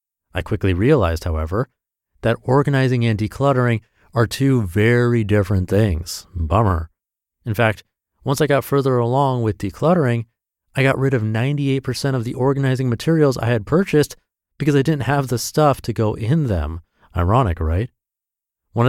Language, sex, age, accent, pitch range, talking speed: English, male, 30-49, American, 90-130 Hz, 155 wpm